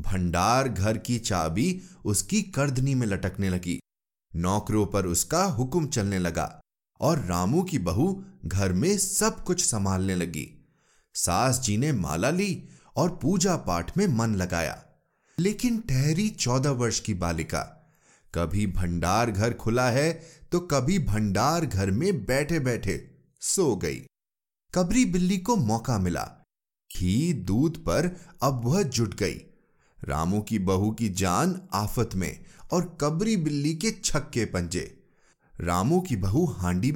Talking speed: 140 wpm